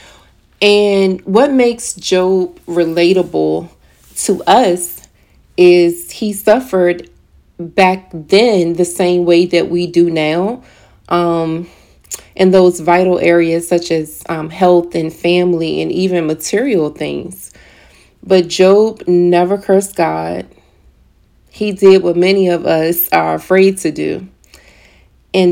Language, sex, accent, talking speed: English, female, American, 120 wpm